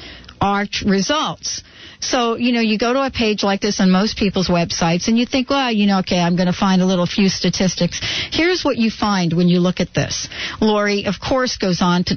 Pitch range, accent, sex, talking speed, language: 180-235 Hz, American, female, 225 wpm, English